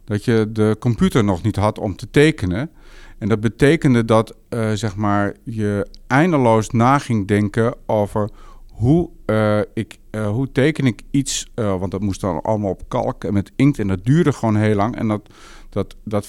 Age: 50-69